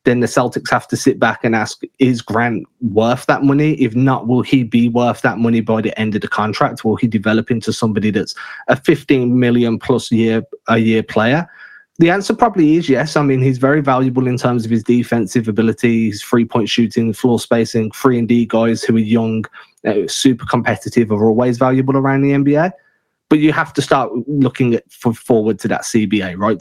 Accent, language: British, English